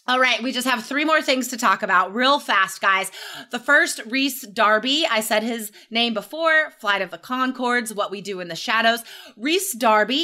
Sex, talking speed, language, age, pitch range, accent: female, 205 wpm, English, 20-39, 200-275 Hz, American